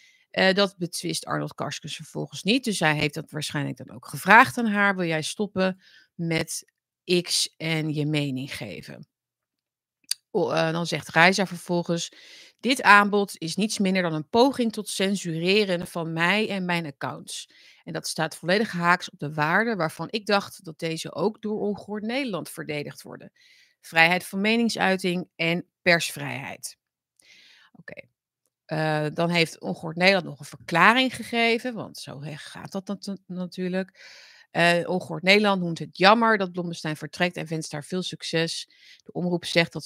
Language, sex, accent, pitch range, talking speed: Dutch, female, Dutch, 160-210 Hz, 160 wpm